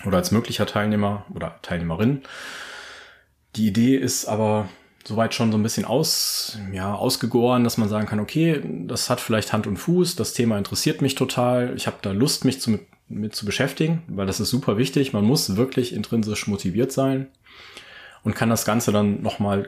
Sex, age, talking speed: male, 30-49, 175 wpm